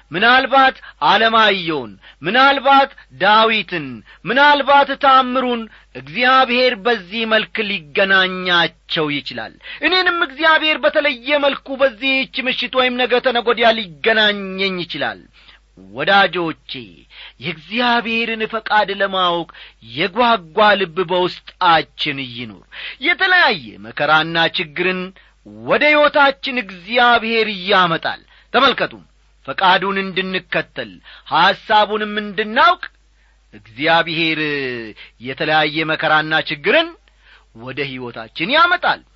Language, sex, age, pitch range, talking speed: Amharic, male, 40-59, 170-260 Hz, 75 wpm